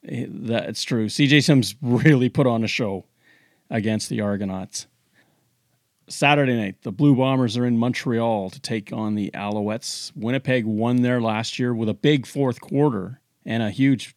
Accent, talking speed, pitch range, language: American, 160 wpm, 105-135 Hz, English